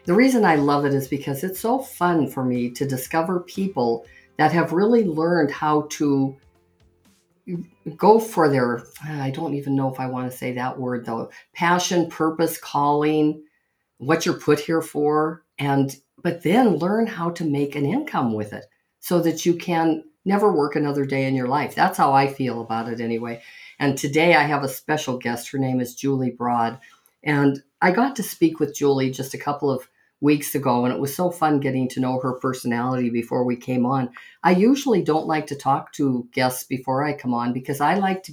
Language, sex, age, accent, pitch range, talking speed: English, female, 50-69, American, 130-160 Hz, 200 wpm